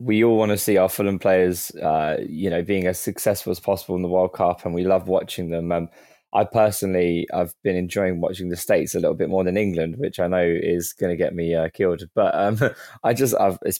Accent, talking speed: British, 245 wpm